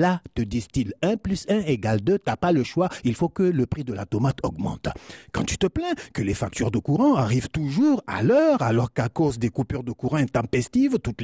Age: 50-69